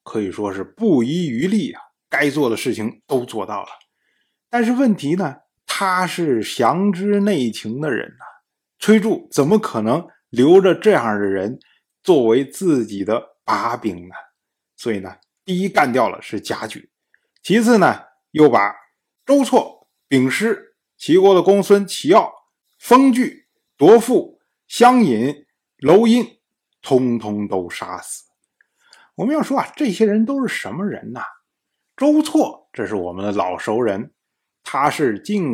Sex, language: male, Chinese